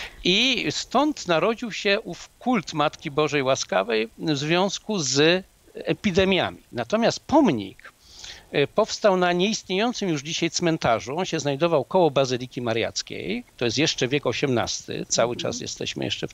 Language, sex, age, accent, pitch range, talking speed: Polish, male, 50-69, native, 145-210 Hz, 135 wpm